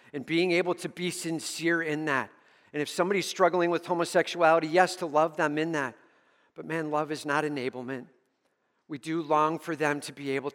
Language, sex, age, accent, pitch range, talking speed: English, male, 50-69, American, 150-190 Hz, 195 wpm